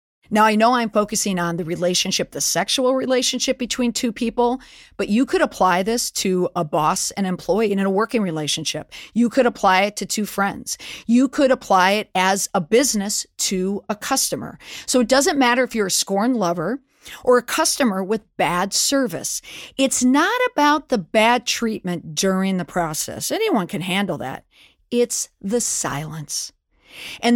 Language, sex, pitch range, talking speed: English, female, 185-250 Hz, 170 wpm